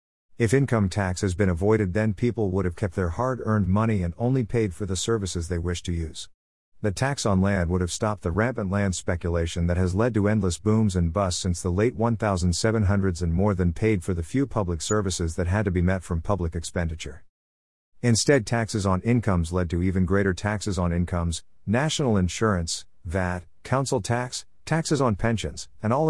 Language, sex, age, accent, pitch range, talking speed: English, male, 50-69, American, 90-115 Hz, 195 wpm